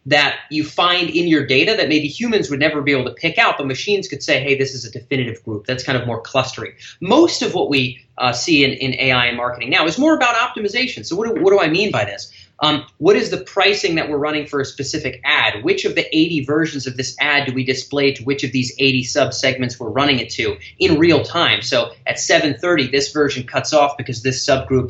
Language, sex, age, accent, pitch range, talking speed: English, male, 30-49, American, 130-175 Hz, 245 wpm